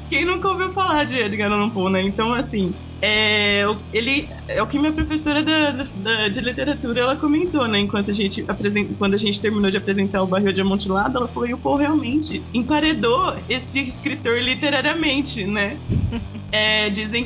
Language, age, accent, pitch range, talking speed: Portuguese, 20-39, Brazilian, 200-285 Hz, 180 wpm